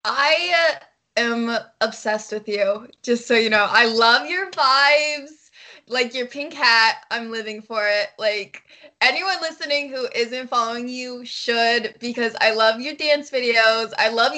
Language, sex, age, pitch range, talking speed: English, female, 20-39, 230-295 Hz, 155 wpm